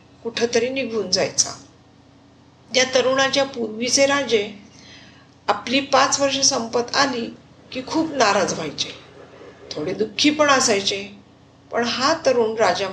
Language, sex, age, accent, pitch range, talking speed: Marathi, female, 50-69, native, 200-255 Hz, 110 wpm